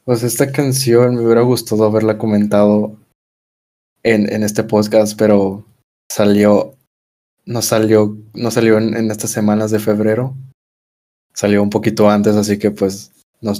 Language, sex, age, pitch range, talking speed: Spanish, male, 20-39, 105-120 Hz, 140 wpm